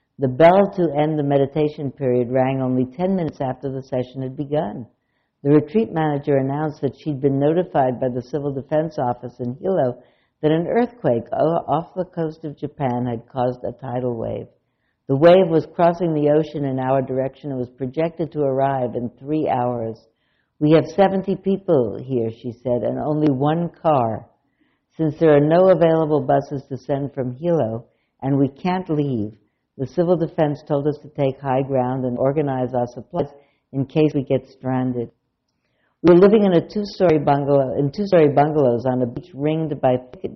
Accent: American